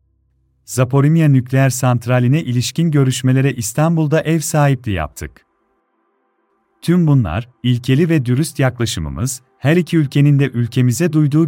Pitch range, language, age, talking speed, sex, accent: 120-155 Hz, Turkish, 40-59, 110 wpm, male, native